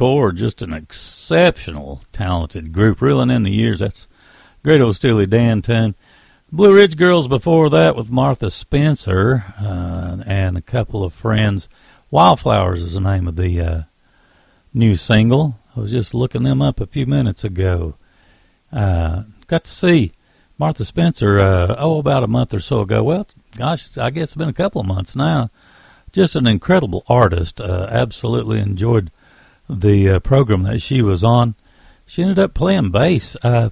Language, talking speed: English, 165 wpm